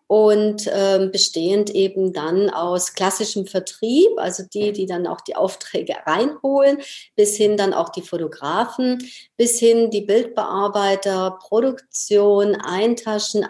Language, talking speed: German, 125 wpm